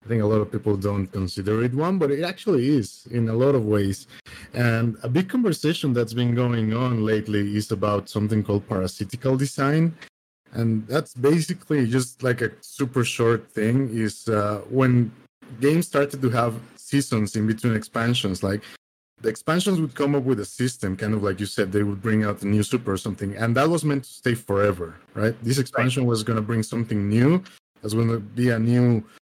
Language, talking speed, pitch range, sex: English, 205 wpm, 110-130 Hz, male